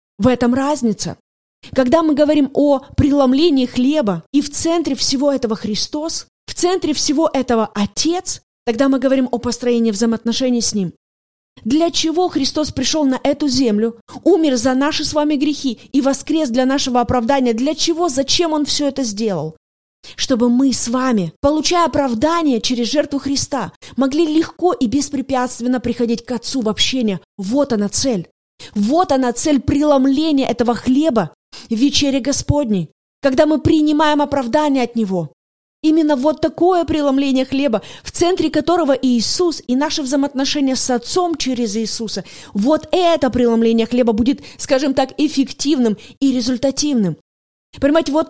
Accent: native